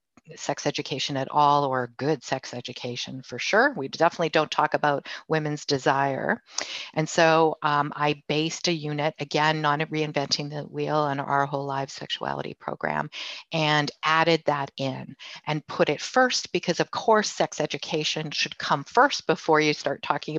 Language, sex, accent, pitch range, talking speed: English, female, American, 145-165 Hz, 160 wpm